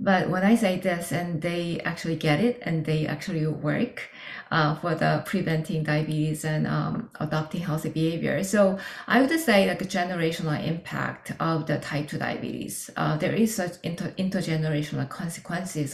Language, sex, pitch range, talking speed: English, female, 155-200 Hz, 160 wpm